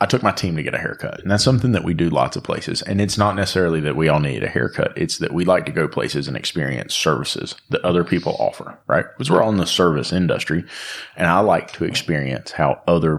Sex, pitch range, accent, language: male, 80-100 Hz, American, English